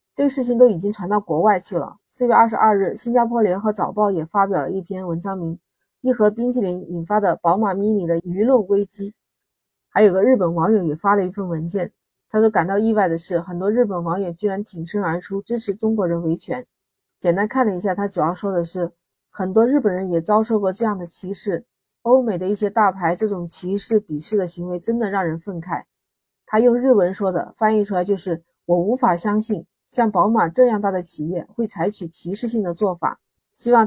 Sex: female